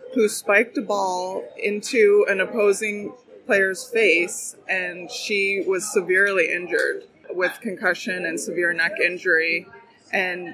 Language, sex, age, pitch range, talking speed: English, female, 20-39, 195-260 Hz, 120 wpm